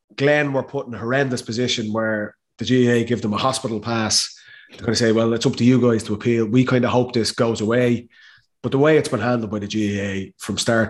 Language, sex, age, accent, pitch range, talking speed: English, male, 30-49, Irish, 110-130 Hz, 240 wpm